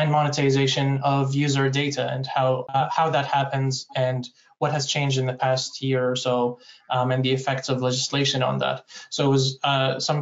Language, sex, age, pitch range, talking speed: English, male, 20-39, 130-140 Hz, 200 wpm